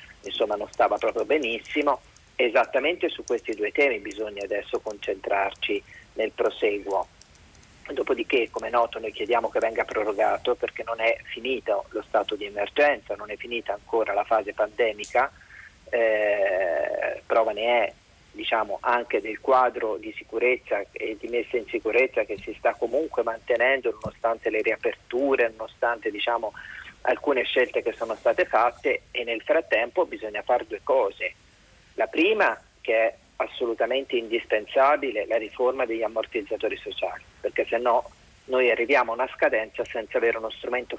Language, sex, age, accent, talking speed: Italian, male, 40-59, native, 145 wpm